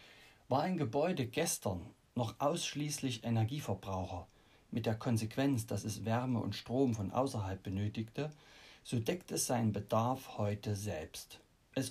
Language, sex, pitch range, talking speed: German, male, 105-135 Hz, 130 wpm